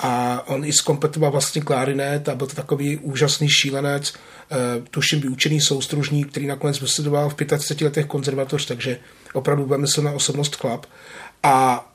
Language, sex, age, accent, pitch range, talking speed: Czech, male, 30-49, native, 135-155 Hz, 150 wpm